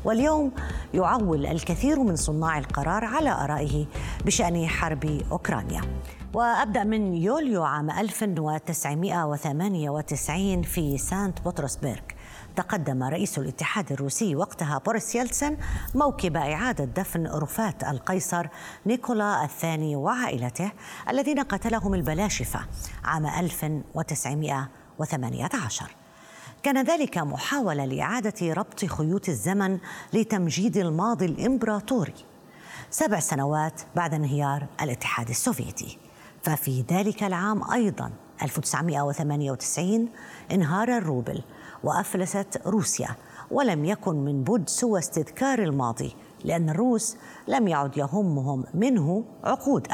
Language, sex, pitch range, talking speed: Arabic, female, 145-215 Hz, 95 wpm